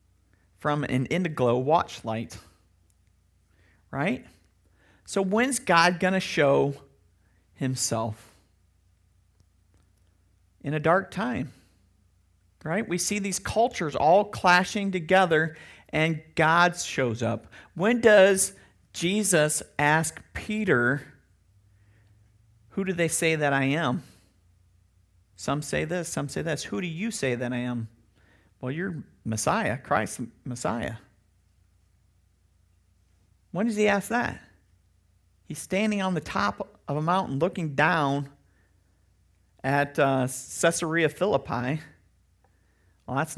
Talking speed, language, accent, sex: 110 wpm, English, American, male